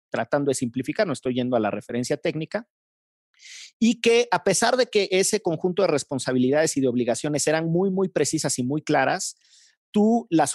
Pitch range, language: 140-180 Hz, Spanish